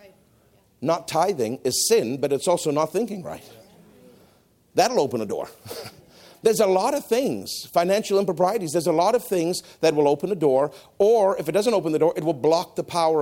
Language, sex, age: English, male, 50-69